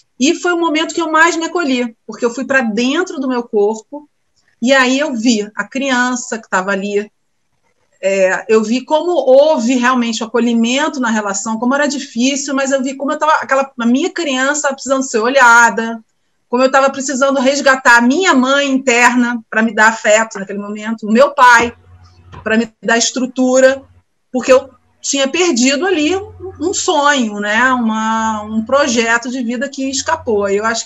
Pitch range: 220-285 Hz